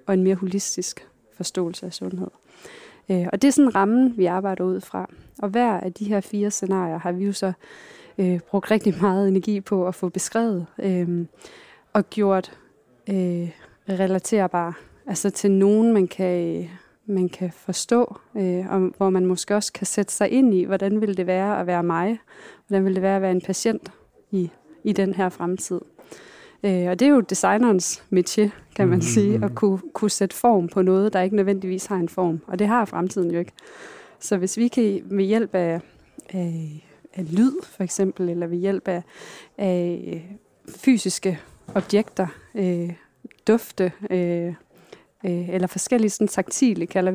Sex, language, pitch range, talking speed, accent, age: female, Danish, 180-210 Hz, 170 wpm, native, 20-39